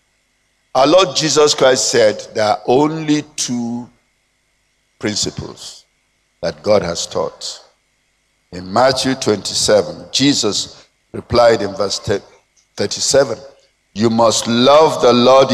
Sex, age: male, 50-69